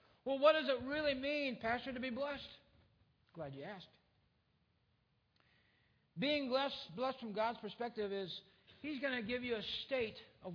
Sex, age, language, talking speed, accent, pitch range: male, 60-79, English, 160 wpm, American, 205-260 Hz